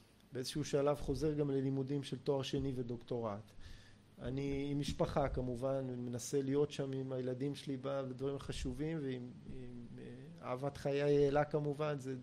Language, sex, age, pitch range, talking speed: Hebrew, male, 30-49, 130-170 Hz, 155 wpm